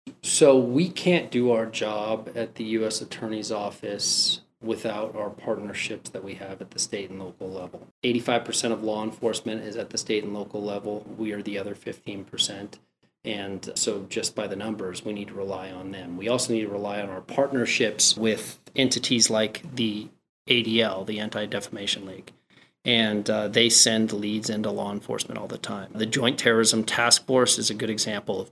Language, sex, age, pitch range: English, male, 30-49, 105-120 Hz